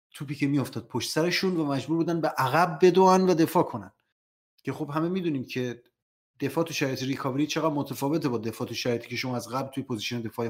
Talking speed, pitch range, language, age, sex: 200 wpm, 125-155 Hz, Persian, 30-49, male